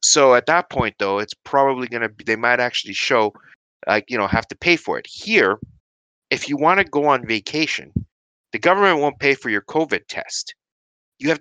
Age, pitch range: 30-49, 105-140 Hz